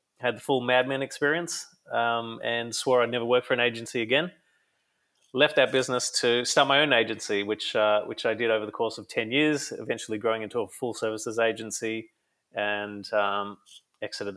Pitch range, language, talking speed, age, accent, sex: 105-120 Hz, English, 185 wpm, 30-49, Australian, male